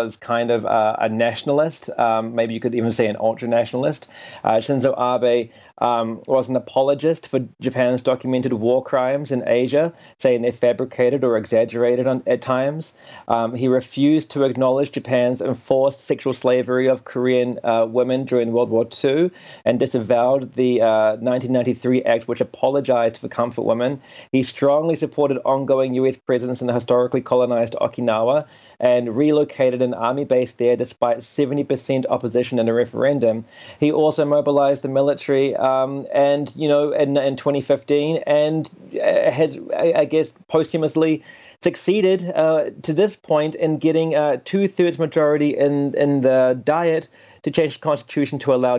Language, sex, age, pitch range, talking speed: English, male, 30-49, 120-145 Hz, 150 wpm